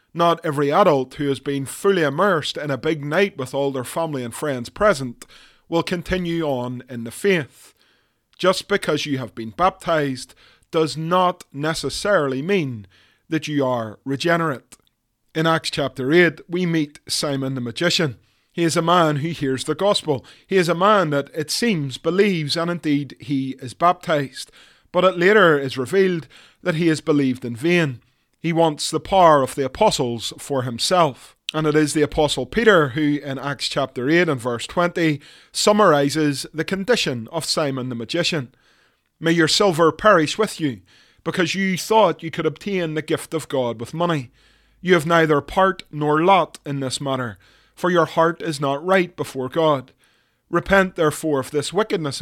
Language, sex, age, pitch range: English, male, 30-49, 135-175 Hz